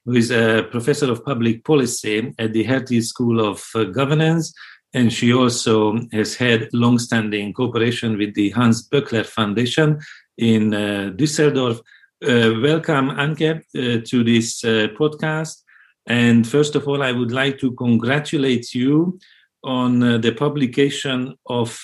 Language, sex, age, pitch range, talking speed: English, male, 50-69, 115-140 Hz, 145 wpm